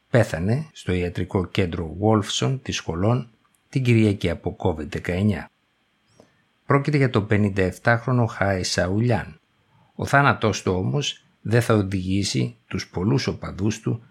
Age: 60-79